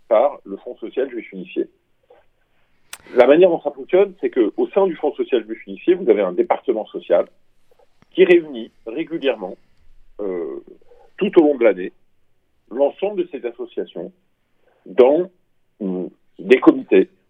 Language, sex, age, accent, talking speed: Italian, male, 50-69, French, 140 wpm